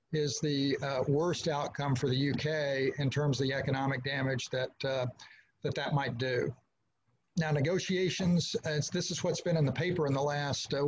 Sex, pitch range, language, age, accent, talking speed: male, 145-170 Hz, English, 50-69, American, 190 wpm